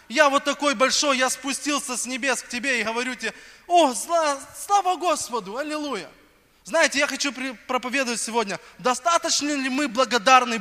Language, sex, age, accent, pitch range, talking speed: Russian, male, 20-39, native, 230-290 Hz, 155 wpm